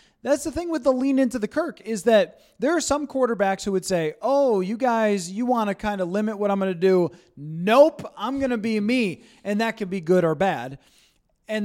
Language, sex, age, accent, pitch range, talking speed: English, male, 20-39, American, 175-215 Hz, 235 wpm